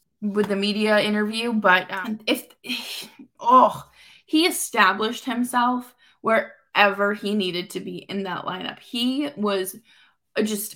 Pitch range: 185-220 Hz